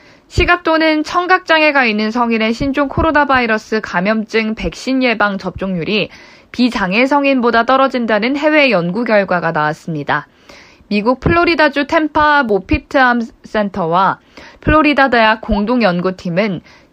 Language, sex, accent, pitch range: Korean, female, native, 185-270 Hz